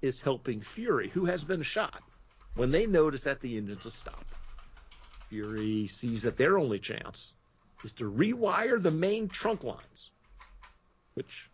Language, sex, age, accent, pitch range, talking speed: English, male, 50-69, American, 115-160 Hz, 150 wpm